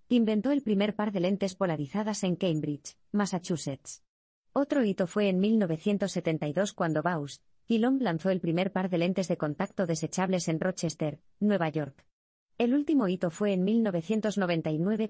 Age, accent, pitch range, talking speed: 20-39, Spanish, 165-215 Hz, 145 wpm